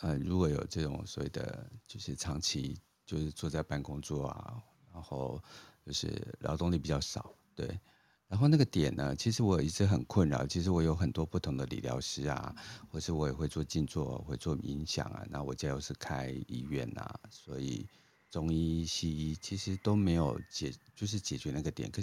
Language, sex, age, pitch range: Chinese, male, 50-69, 75-95 Hz